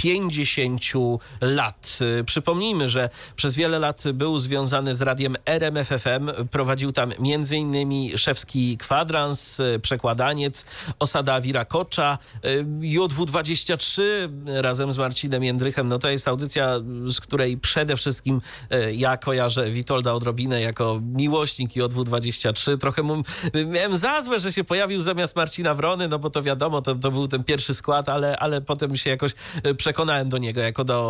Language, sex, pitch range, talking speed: Polish, male, 125-150 Hz, 140 wpm